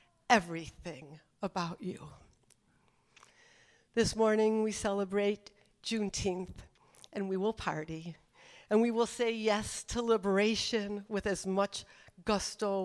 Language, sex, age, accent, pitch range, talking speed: English, female, 60-79, American, 185-225 Hz, 105 wpm